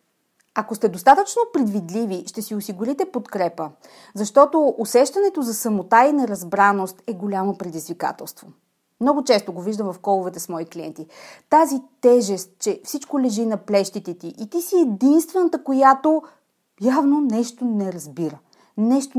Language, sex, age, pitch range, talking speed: Bulgarian, female, 30-49, 190-270 Hz, 140 wpm